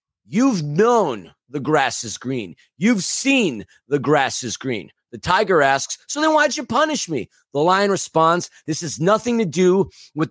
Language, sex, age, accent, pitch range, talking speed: English, male, 30-49, American, 155-210 Hz, 175 wpm